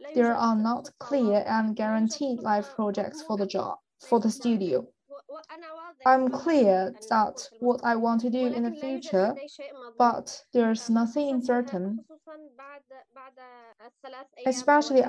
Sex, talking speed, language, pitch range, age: female, 120 wpm, English, 210-255 Hz, 20-39